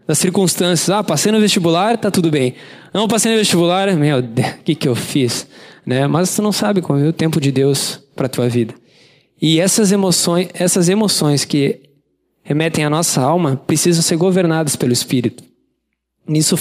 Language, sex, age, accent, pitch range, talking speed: Portuguese, male, 20-39, Brazilian, 145-185 Hz, 180 wpm